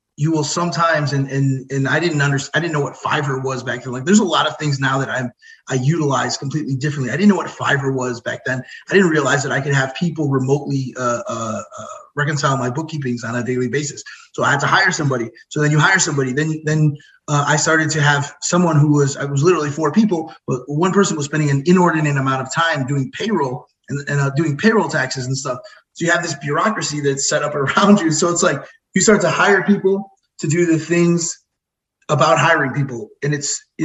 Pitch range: 135-165 Hz